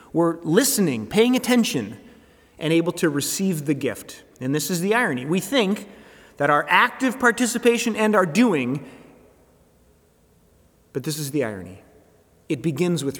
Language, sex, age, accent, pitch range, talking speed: English, male, 30-49, American, 120-175 Hz, 145 wpm